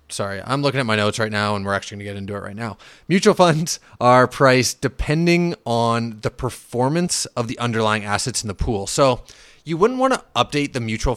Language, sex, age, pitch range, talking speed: English, male, 30-49, 105-140 Hz, 210 wpm